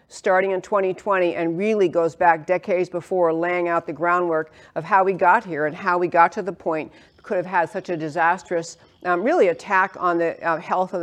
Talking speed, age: 210 wpm, 50-69